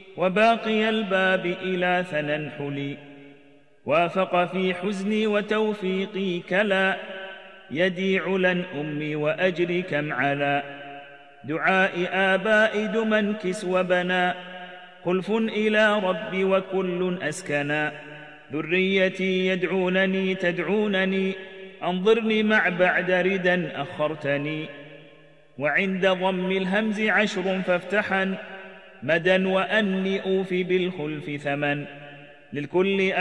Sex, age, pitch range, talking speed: male, 40-59, 150-190 Hz, 80 wpm